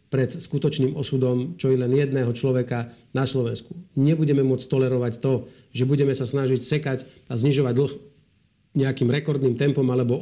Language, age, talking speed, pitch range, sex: Slovak, 40-59, 160 wpm, 125-150 Hz, male